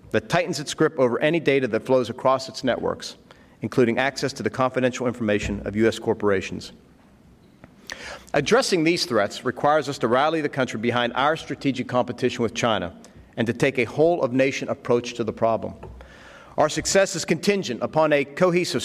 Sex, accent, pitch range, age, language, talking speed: male, American, 120-155 Hz, 40-59, English, 165 wpm